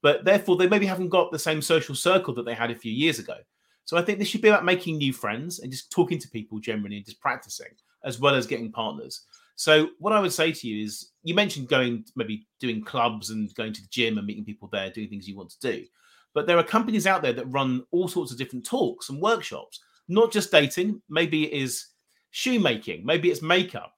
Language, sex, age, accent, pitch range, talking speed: English, male, 30-49, British, 120-200 Hz, 240 wpm